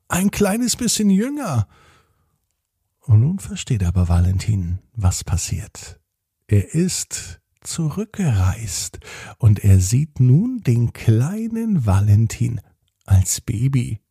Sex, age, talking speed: male, 50-69, 100 wpm